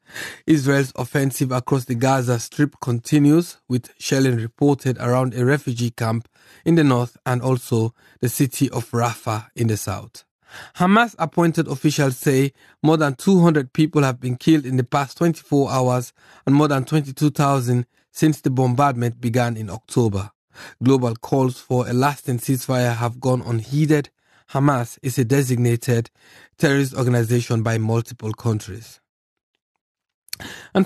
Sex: male